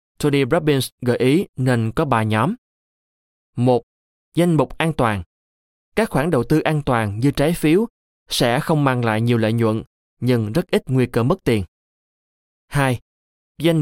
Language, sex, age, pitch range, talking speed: Vietnamese, male, 20-39, 115-150 Hz, 165 wpm